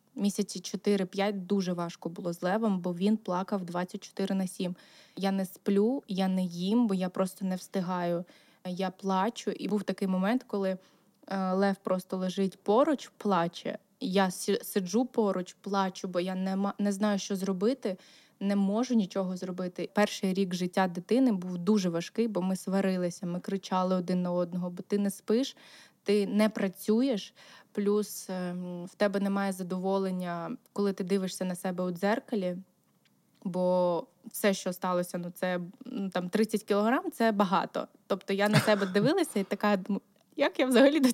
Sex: female